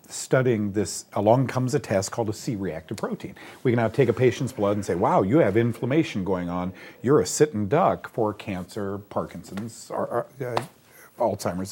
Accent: American